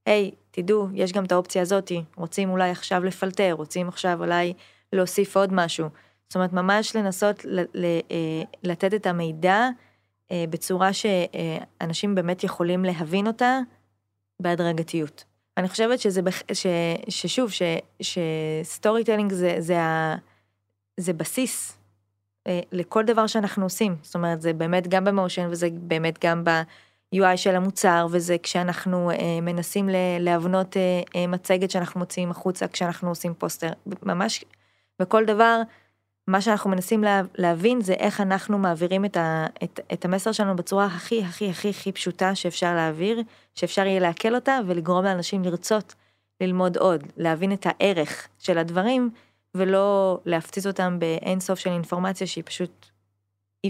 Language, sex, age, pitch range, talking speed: Hebrew, female, 20-39, 170-195 Hz, 140 wpm